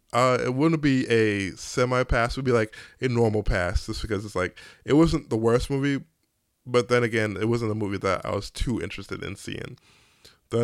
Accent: American